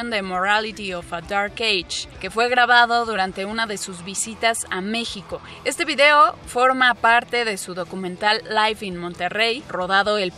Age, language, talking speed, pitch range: 20-39, Spanish, 160 wpm, 190-235 Hz